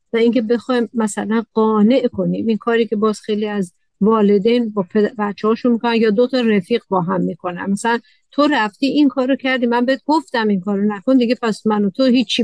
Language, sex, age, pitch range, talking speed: Persian, female, 50-69, 210-255 Hz, 195 wpm